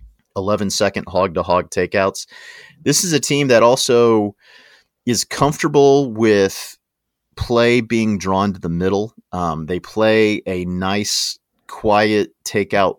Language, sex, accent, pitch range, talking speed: English, male, American, 90-105 Hz, 130 wpm